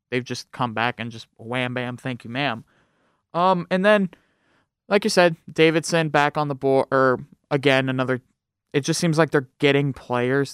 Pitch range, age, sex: 125-145 Hz, 20-39, male